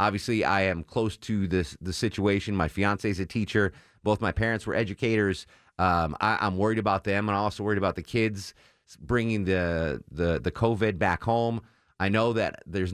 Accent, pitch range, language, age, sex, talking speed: American, 85-110 Hz, English, 30-49, male, 190 wpm